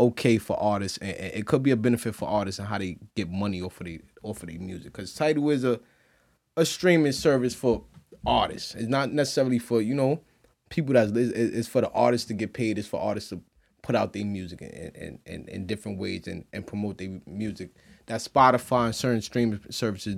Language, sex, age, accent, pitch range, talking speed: English, male, 20-39, American, 105-135 Hz, 215 wpm